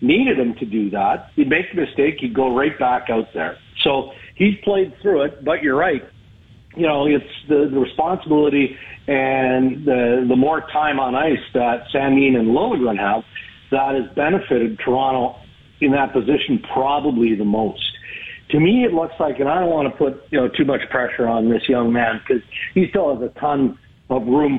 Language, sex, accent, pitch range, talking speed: English, male, American, 120-145 Hz, 195 wpm